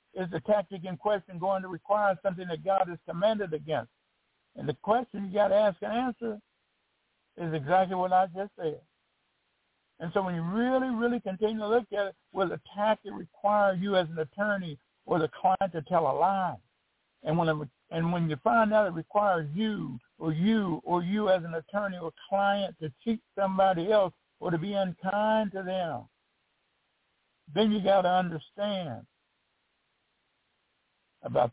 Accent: American